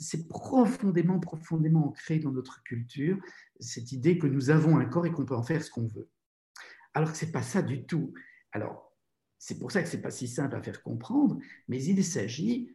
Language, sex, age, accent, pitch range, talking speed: French, male, 50-69, French, 125-165 Hz, 215 wpm